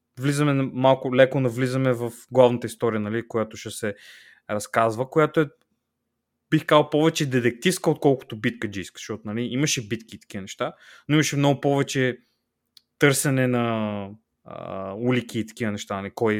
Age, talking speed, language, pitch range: 20-39, 150 wpm, Bulgarian, 110-145 Hz